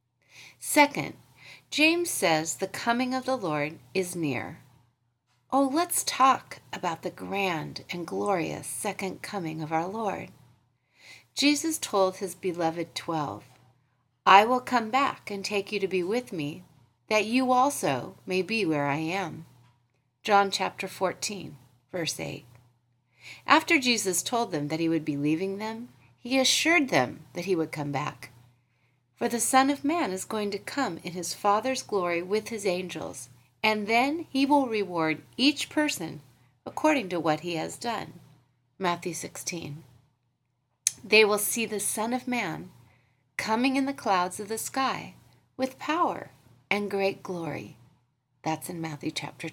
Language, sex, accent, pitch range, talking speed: English, female, American, 145-235 Hz, 150 wpm